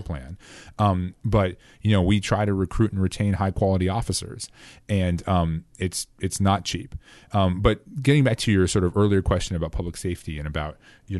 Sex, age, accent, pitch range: male, 30-49, American, 90-110 Hz